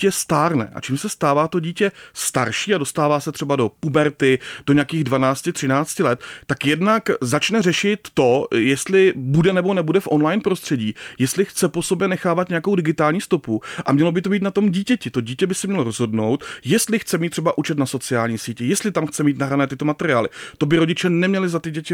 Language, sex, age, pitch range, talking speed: Czech, male, 30-49, 140-180 Hz, 200 wpm